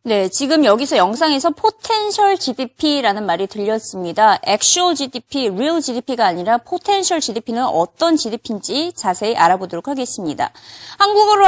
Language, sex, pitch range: Korean, female, 220-335 Hz